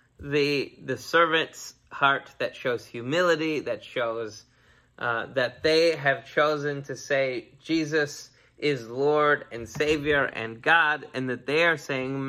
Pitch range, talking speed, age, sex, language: 125-160 Hz, 135 wpm, 20-39, male, English